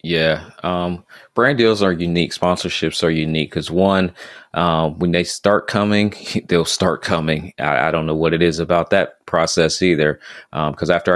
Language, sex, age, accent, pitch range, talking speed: English, male, 30-49, American, 80-90 Hz, 180 wpm